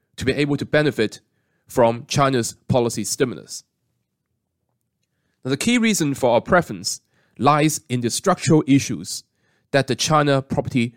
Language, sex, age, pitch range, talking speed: English, male, 30-49, 125-155 Hz, 130 wpm